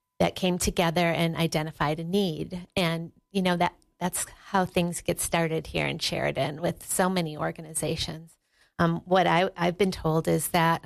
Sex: female